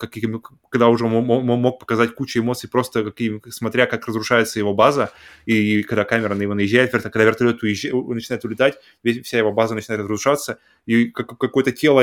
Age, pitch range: 20-39, 115-135 Hz